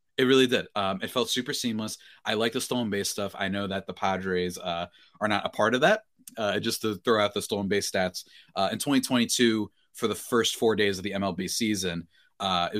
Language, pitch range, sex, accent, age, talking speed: English, 105-145 Hz, male, American, 30-49, 230 wpm